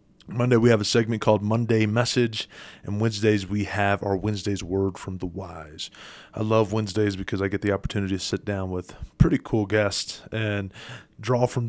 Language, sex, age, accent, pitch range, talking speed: English, male, 30-49, American, 100-115 Hz, 185 wpm